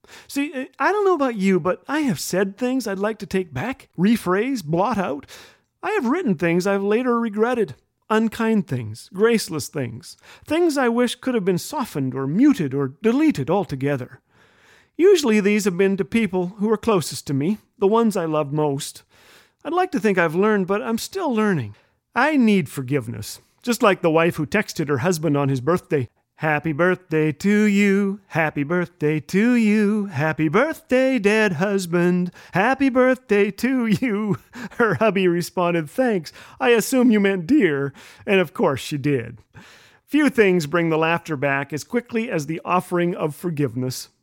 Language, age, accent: English, 40-59, American